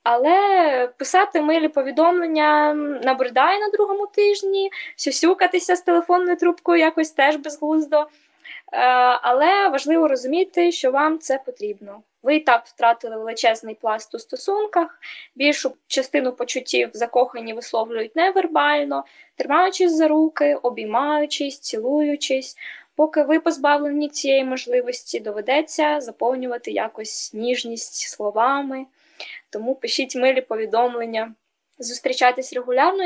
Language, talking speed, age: Ukrainian, 105 wpm, 20-39